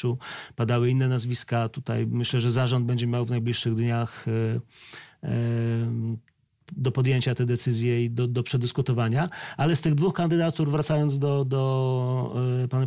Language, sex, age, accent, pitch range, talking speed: Polish, male, 40-59, native, 115-130 Hz, 135 wpm